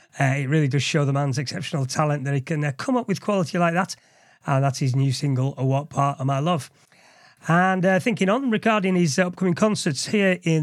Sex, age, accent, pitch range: male, 30-49, British, 145-180 Hz